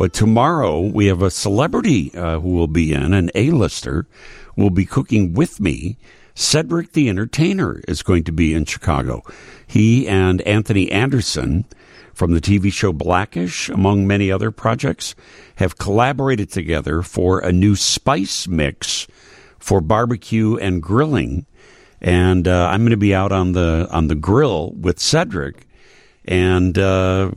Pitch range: 85-110 Hz